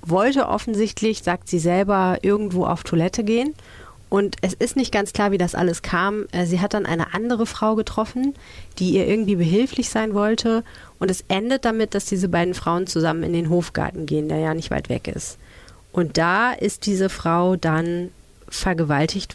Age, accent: 30-49, German